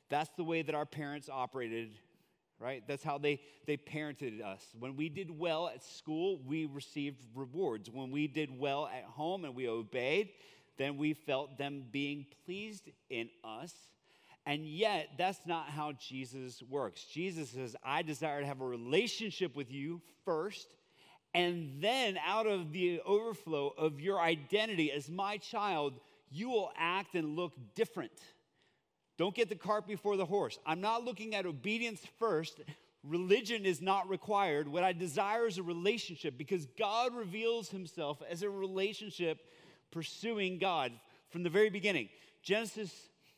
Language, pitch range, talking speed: English, 150-195 Hz, 155 wpm